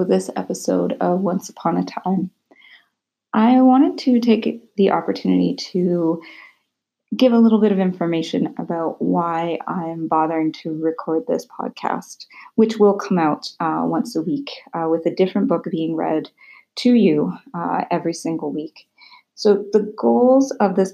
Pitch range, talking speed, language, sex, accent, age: 165-205 Hz, 155 wpm, English, female, American, 30-49